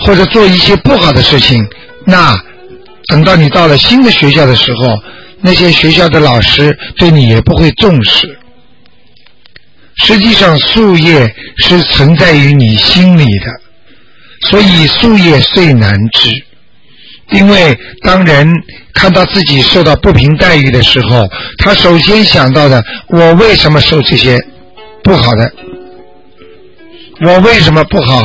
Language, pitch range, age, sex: Chinese, 130-190 Hz, 60-79, male